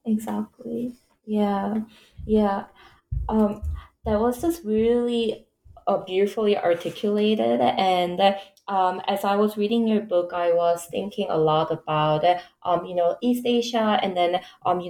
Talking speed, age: 135 wpm, 20-39